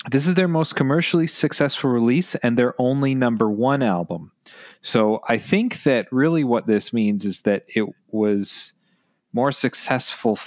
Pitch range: 110-160 Hz